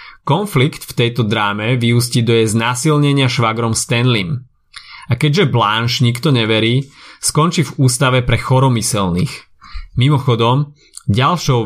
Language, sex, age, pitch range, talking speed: Slovak, male, 30-49, 115-140 Hz, 110 wpm